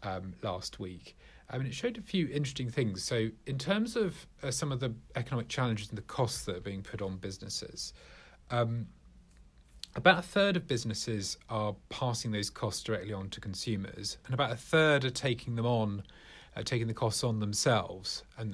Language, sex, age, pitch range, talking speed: English, male, 40-59, 105-135 Hz, 190 wpm